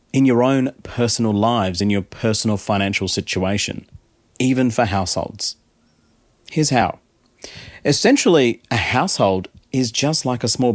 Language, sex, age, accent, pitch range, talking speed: English, male, 30-49, Australian, 100-130 Hz, 130 wpm